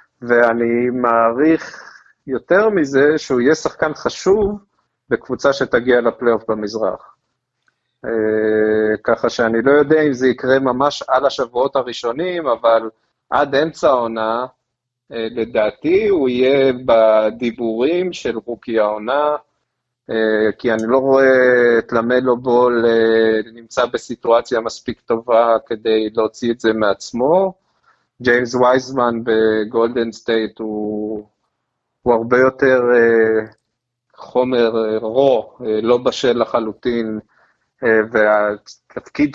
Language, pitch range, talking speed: Hebrew, 115-135 Hz, 100 wpm